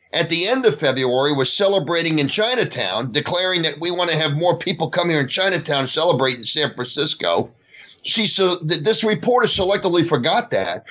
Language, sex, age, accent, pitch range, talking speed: English, male, 40-59, American, 155-225 Hz, 180 wpm